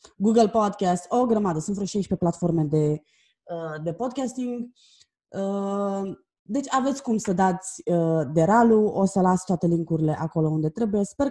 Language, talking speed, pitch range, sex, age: Romanian, 140 wpm, 170-235 Hz, female, 20-39